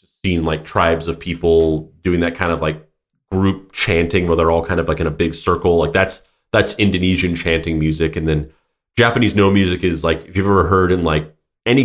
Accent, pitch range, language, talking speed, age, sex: American, 85-110 Hz, English, 210 wpm, 30-49, male